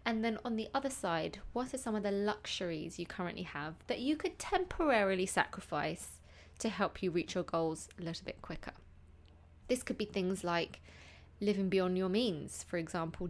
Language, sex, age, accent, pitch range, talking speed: English, female, 20-39, British, 175-225 Hz, 185 wpm